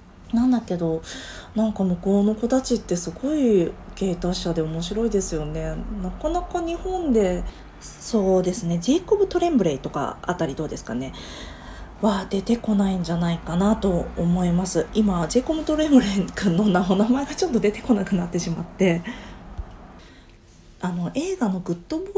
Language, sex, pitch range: Japanese, female, 170-240 Hz